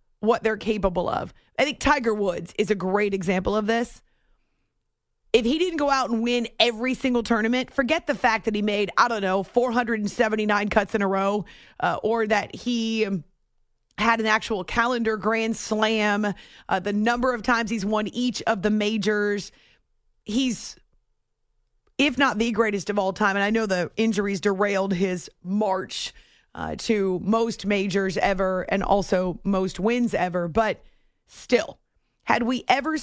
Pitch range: 195-225 Hz